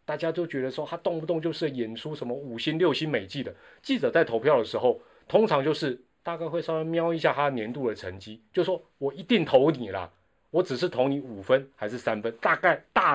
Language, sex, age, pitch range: Chinese, male, 30-49, 120-170 Hz